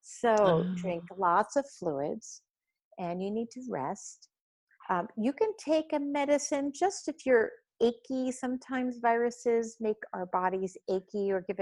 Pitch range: 180-255 Hz